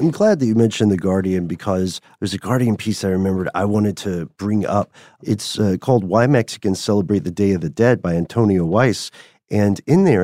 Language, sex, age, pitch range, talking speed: English, male, 40-59, 95-125 Hz, 210 wpm